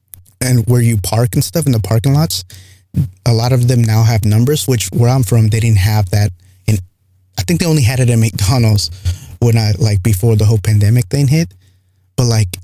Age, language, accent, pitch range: 20-39, English, American, 105-125 Hz